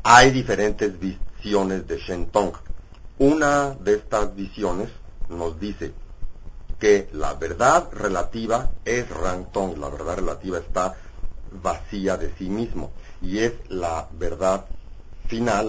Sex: male